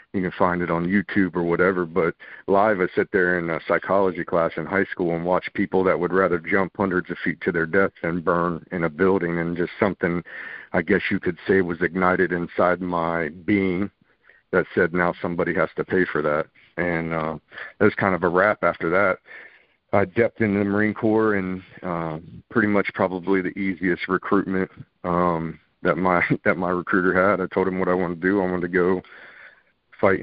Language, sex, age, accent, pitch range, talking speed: English, male, 50-69, American, 90-105 Hz, 205 wpm